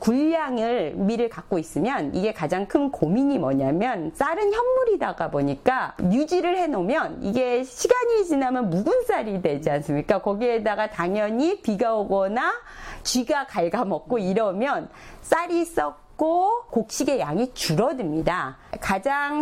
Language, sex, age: Korean, female, 40-59